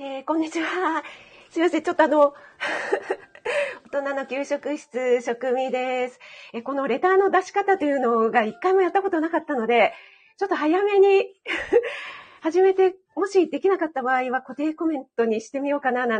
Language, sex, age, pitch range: Japanese, female, 40-59, 250-325 Hz